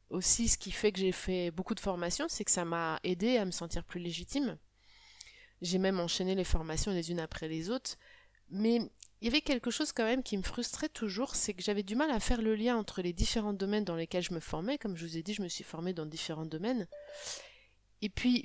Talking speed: 240 wpm